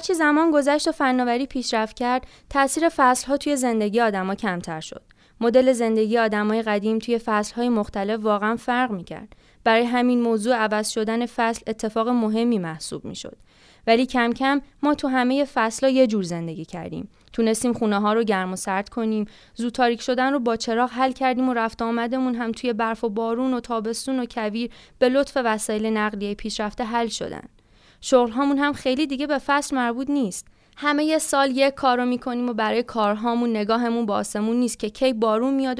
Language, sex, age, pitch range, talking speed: Persian, female, 20-39, 215-260 Hz, 185 wpm